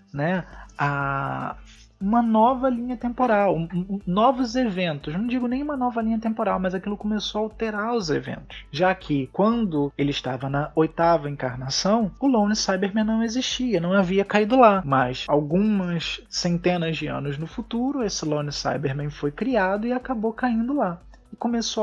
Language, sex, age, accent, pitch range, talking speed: Portuguese, male, 20-39, Brazilian, 155-230 Hz, 160 wpm